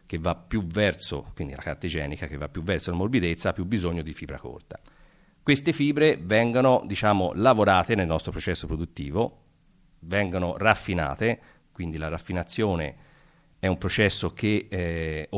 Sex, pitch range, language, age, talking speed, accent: male, 85-110 Hz, Italian, 50-69, 150 wpm, native